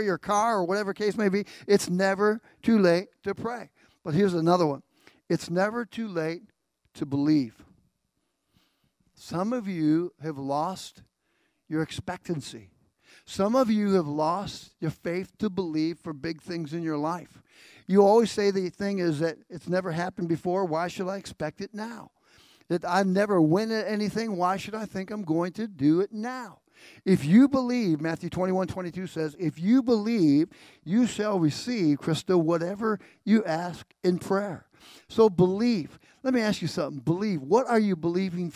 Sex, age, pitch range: male, 50-69, 165-210 Hz